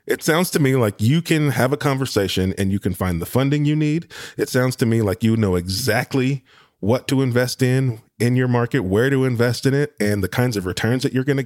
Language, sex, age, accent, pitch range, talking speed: English, male, 30-49, American, 95-130 Hz, 245 wpm